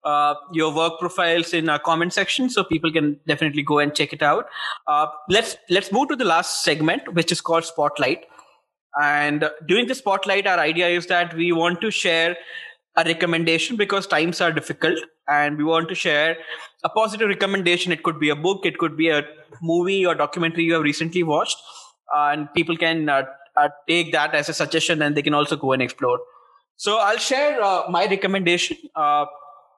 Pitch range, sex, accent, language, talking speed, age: 150-180 Hz, male, Indian, English, 195 wpm, 20-39